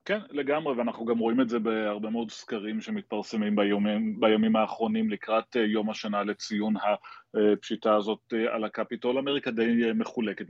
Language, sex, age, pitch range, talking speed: Hebrew, male, 30-49, 110-135 Hz, 145 wpm